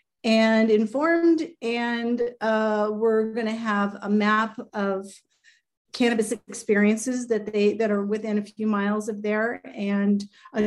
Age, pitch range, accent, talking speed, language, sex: 40-59, 200-235 Hz, American, 140 wpm, English, female